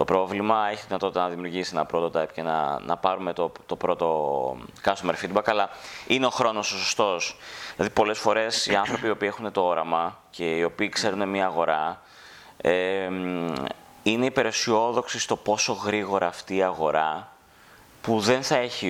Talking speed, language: 170 wpm, Greek